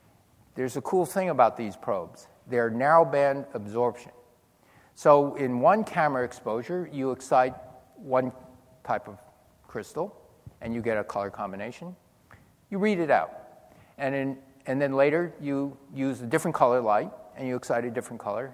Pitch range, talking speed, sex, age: 115-140 Hz, 155 wpm, male, 50-69